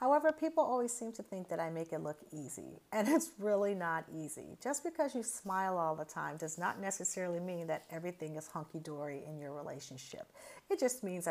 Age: 40-59